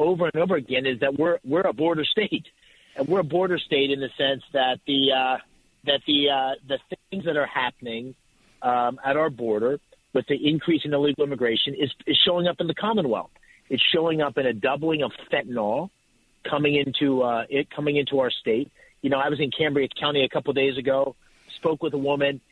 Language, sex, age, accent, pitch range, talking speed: English, male, 40-59, American, 130-155 Hz, 210 wpm